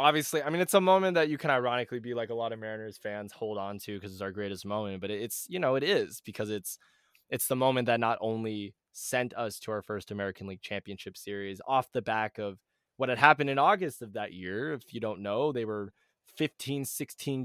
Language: English